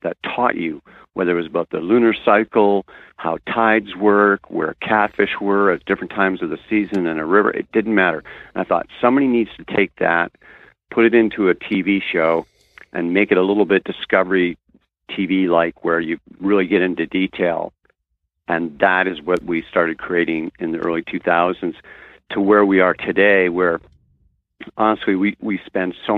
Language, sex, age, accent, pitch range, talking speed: English, male, 50-69, American, 85-100 Hz, 175 wpm